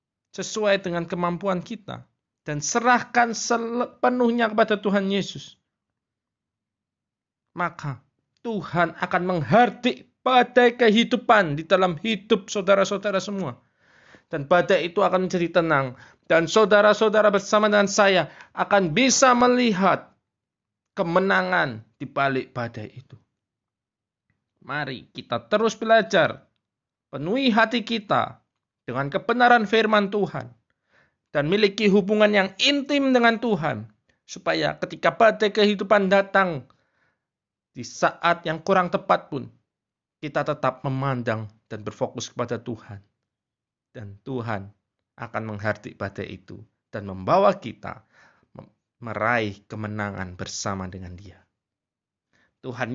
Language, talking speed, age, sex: Indonesian, 105 wpm, 20-39, male